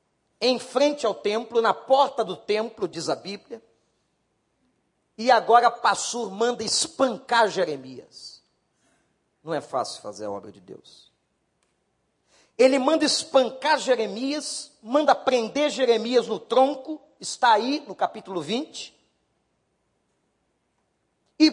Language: Portuguese